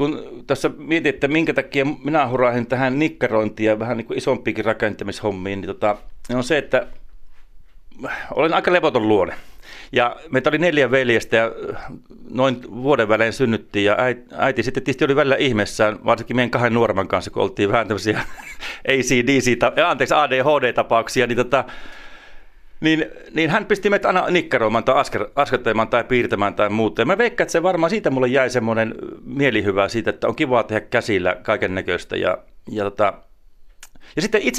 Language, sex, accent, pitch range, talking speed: Finnish, male, native, 115-145 Hz, 160 wpm